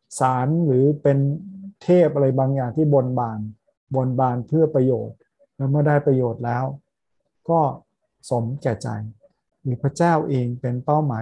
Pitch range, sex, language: 125-150 Hz, male, Thai